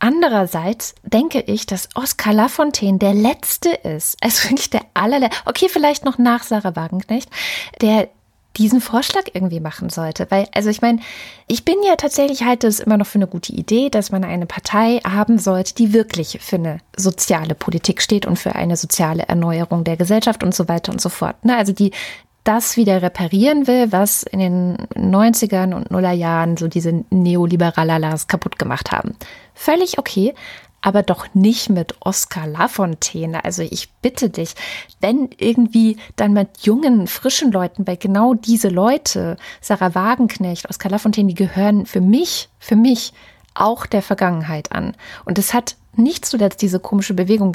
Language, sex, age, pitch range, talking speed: German, female, 20-39, 185-235 Hz, 165 wpm